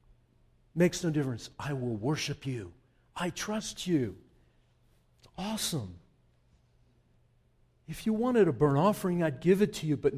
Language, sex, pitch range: English, male, 140-225 Hz